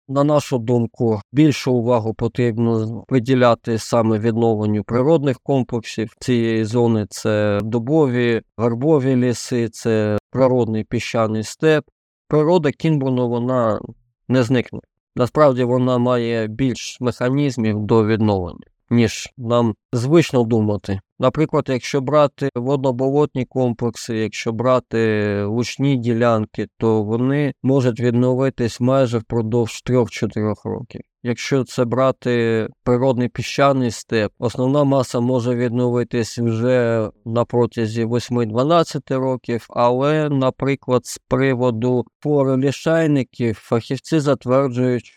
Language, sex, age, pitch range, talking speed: Ukrainian, male, 20-39, 115-130 Hz, 100 wpm